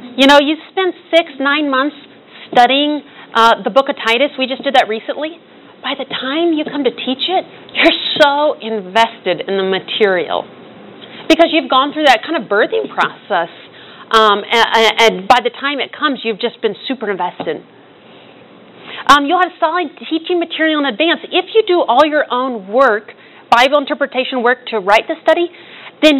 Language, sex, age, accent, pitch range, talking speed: English, female, 40-59, American, 225-300 Hz, 175 wpm